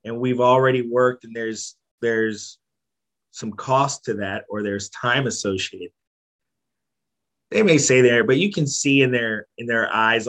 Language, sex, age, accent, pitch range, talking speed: English, male, 30-49, American, 110-130 Hz, 165 wpm